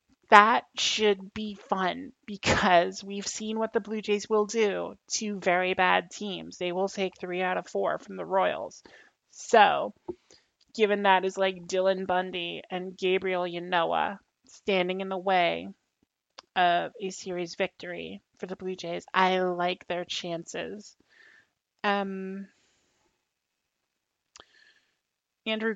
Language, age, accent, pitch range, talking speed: English, 30-49, American, 185-210 Hz, 130 wpm